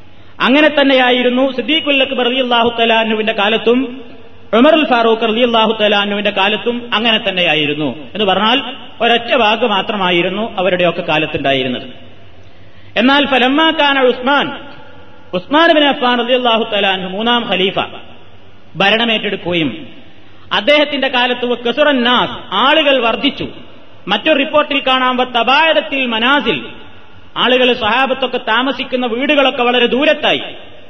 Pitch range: 210-265 Hz